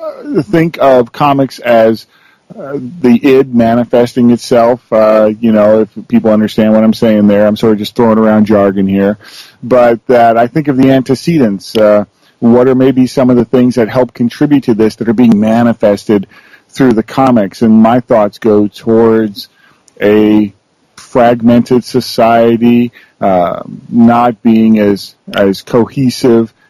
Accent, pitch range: American, 105-125 Hz